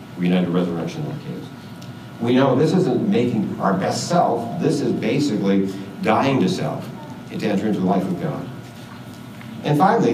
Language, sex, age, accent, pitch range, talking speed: English, male, 60-79, American, 100-135 Hz, 140 wpm